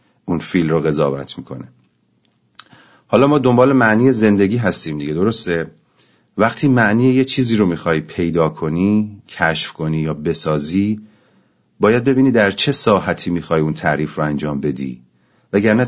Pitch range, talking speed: 85-110 Hz, 140 wpm